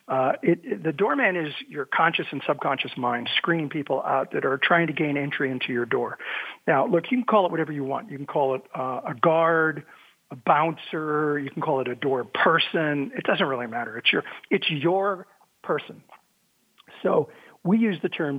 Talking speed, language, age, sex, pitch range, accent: 200 wpm, English, 50-69, male, 150-200 Hz, American